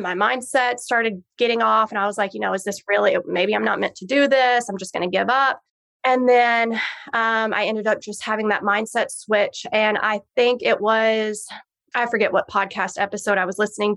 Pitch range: 205-240 Hz